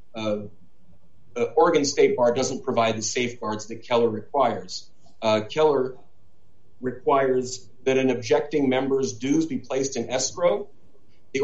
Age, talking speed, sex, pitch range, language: 40-59, 130 wpm, male, 115-175 Hz, English